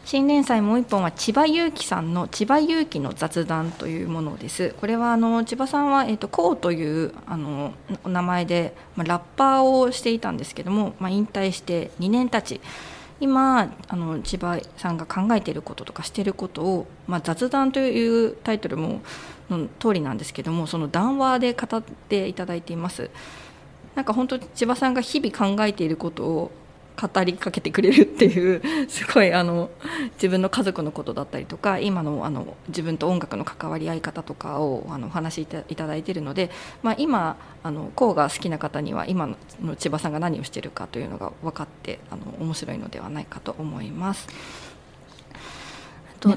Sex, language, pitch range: female, Japanese, 170-235 Hz